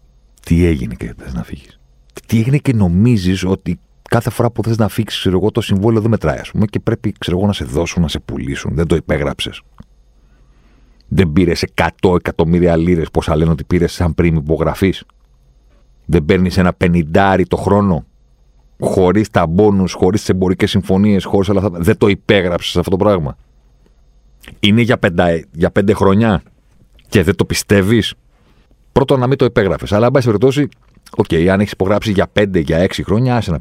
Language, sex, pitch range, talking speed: Greek, male, 80-105 Hz, 175 wpm